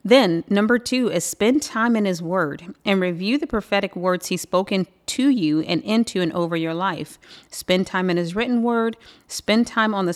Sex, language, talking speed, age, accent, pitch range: female, English, 200 wpm, 30-49, American, 165-195 Hz